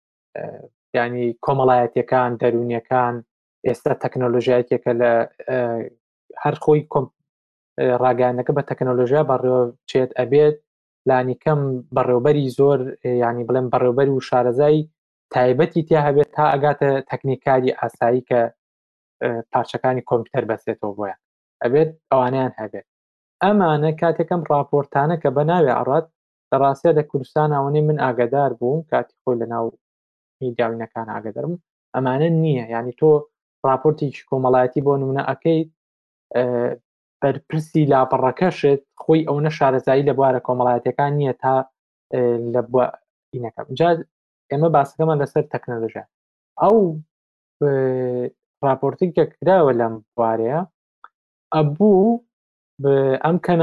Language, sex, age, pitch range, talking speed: Arabic, male, 20-39, 125-155 Hz, 75 wpm